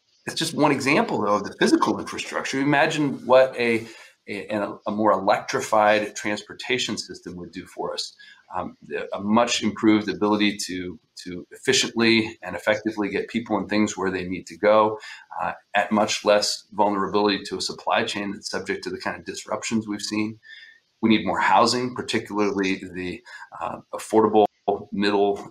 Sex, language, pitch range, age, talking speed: male, English, 100-115 Hz, 30-49, 160 wpm